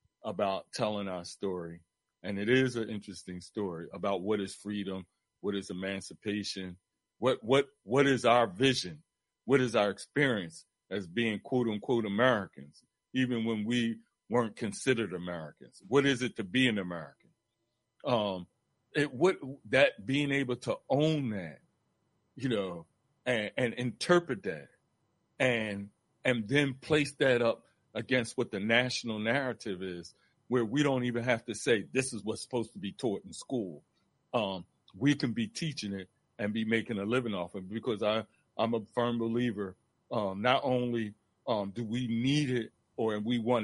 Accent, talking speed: American, 160 wpm